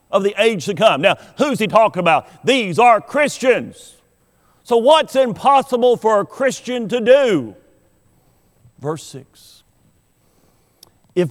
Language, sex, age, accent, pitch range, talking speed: English, male, 50-69, American, 160-220 Hz, 125 wpm